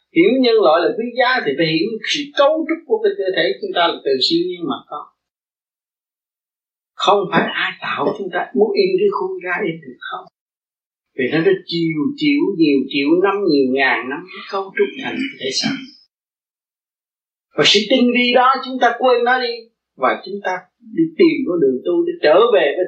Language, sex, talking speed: Vietnamese, male, 200 wpm